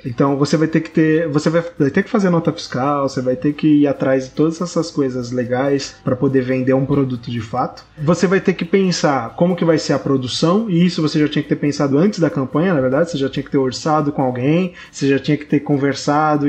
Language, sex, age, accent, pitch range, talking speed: Portuguese, male, 20-39, Brazilian, 135-170 Hz, 255 wpm